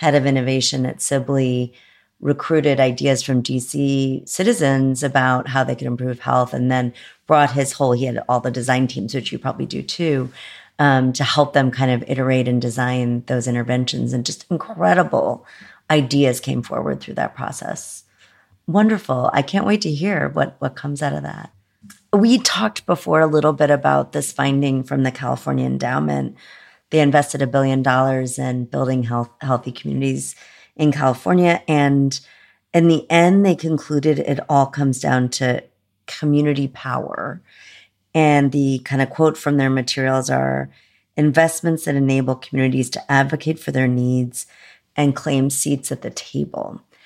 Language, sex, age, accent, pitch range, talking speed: English, female, 40-59, American, 125-150 Hz, 155 wpm